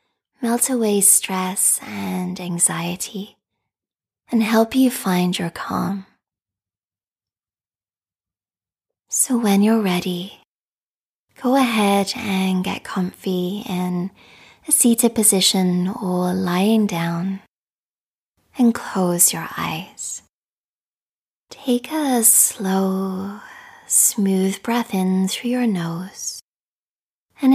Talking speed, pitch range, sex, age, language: 90 wpm, 180-230 Hz, female, 20-39, English